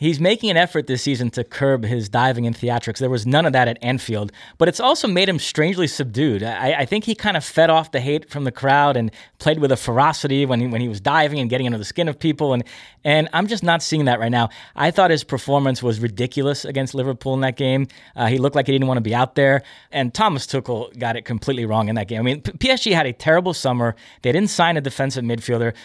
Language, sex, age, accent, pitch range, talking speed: English, male, 30-49, American, 125-160 Hz, 260 wpm